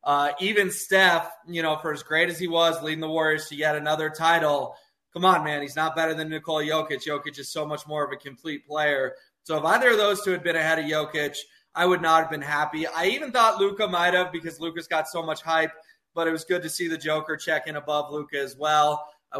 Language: English